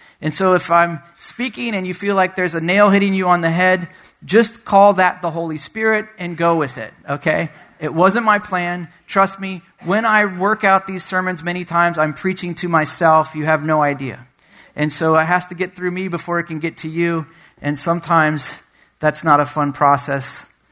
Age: 40-59